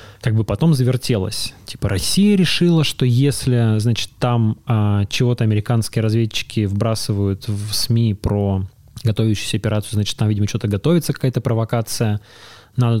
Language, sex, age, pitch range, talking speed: Russian, male, 20-39, 105-125 Hz, 130 wpm